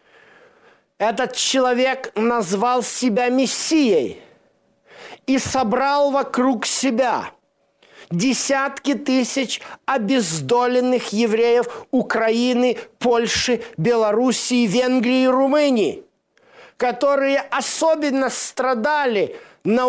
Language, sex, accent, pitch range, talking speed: Russian, male, native, 235-280 Hz, 70 wpm